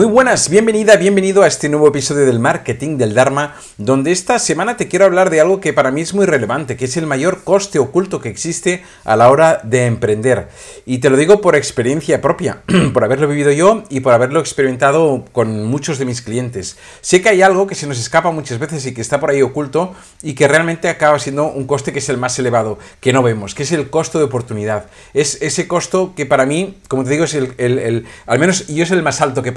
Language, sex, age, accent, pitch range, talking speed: Spanish, male, 50-69, Spanish, 125-170 Hz, 240 wpm